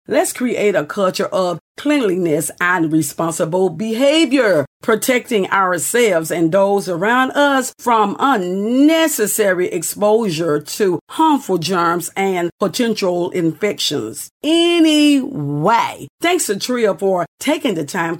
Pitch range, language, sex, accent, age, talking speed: 175-250 Hz, English, female, American, 40-59, 105 wpm